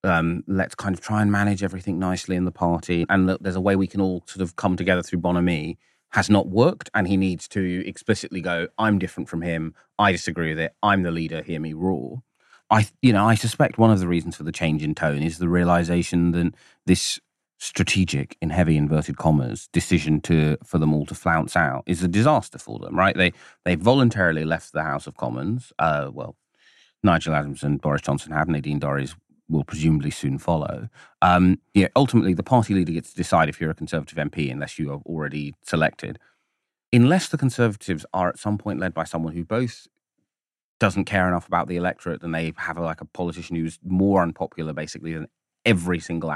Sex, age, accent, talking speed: male, 30-49, British, 205 wpm